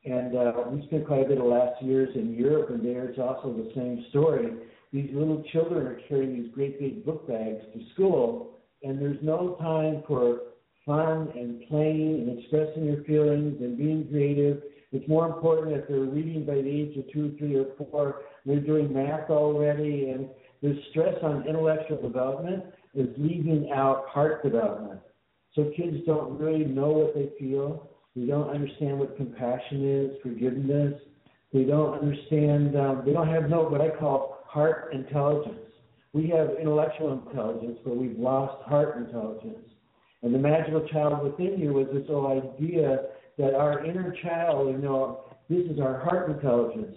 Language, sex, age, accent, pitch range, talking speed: English, male, 60-79, American, 135-155 Hz, 170 wpm